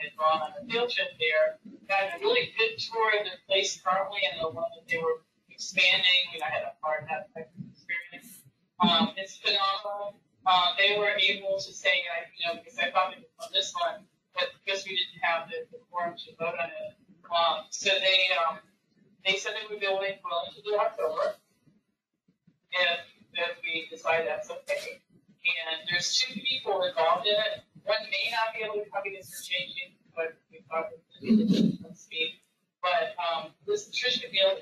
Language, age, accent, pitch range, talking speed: English, 30-49, American, 170-230 Hz, 200 wpm